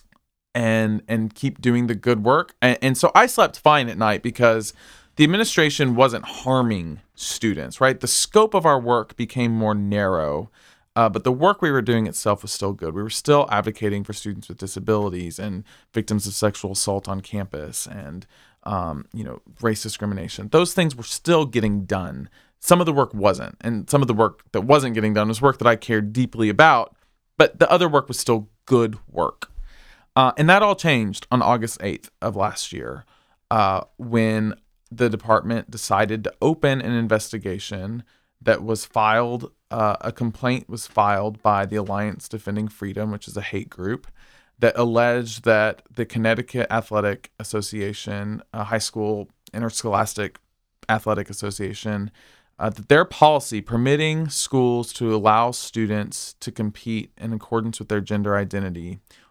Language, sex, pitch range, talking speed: English, male, 105-120 Hz, 165 wpm